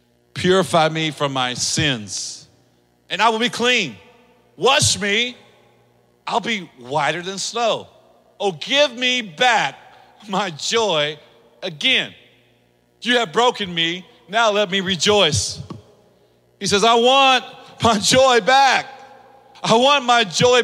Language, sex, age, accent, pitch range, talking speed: English, male, 50-69, American, 190-275 Hz, 125 wpm